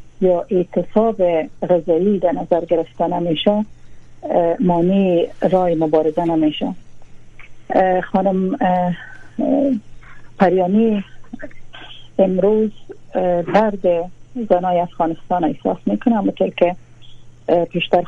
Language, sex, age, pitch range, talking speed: Persian, female, 40-59, 165-190 Hz, 65 wpm